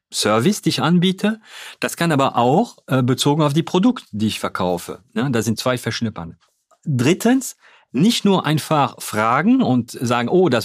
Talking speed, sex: 165 wpm, male